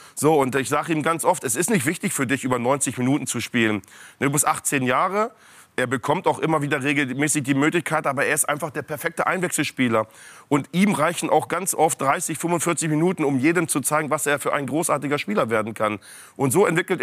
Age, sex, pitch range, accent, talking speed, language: 40-59, male, 140-175 Hz, German, 215 wpm, German